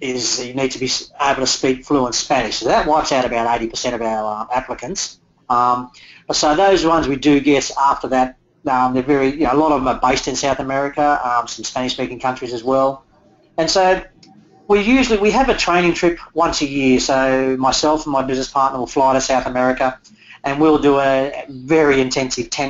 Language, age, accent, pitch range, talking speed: English, 40-59, Australian, 130-155 Hz, 205 wpm